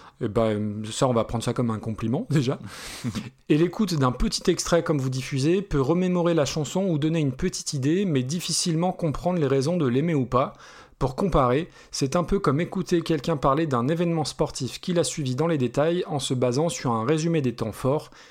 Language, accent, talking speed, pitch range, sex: French, French, 210 wpm, 125-170 Hz, male